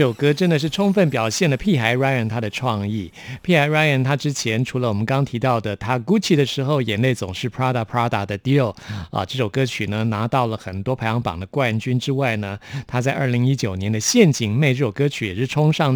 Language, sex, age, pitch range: Chinese, male, 50-69, 115-150 Hz